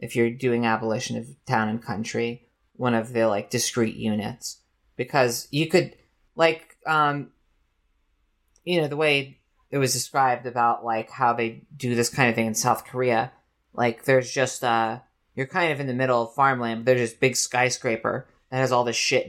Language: English